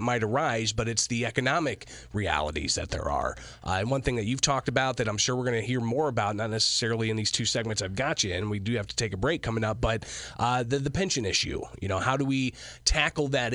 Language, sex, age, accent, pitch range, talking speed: English, male, 30-49, American, 110-145 Hz, 260 wpm